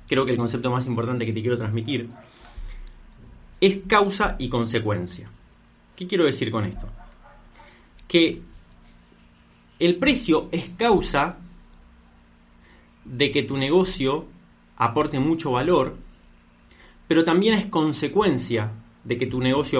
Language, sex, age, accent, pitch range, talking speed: Spanish, male, 30-49, Argentinian, 115-155 Hz, 120 wpm